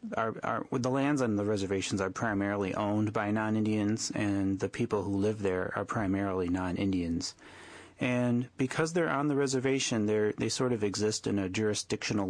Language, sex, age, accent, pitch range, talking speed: English, male, 30-49, American, 95-115 Hz, 170 wpm